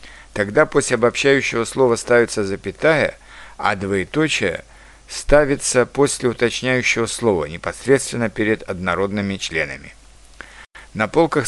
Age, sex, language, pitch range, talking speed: 60-79, male, Russian, 100-125 Hz, 95 wpm